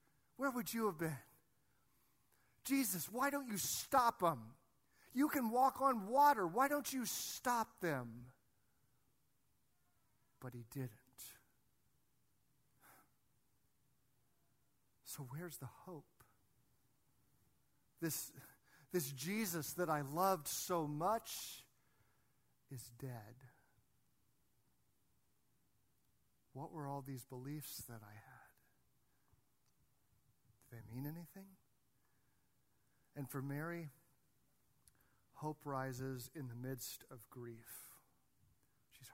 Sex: male